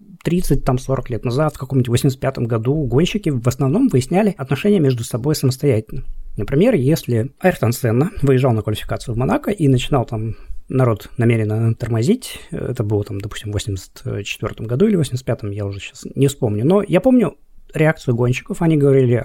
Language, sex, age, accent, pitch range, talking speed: Russian, male, 20-39, native, 115-160 Hz, 160 wpm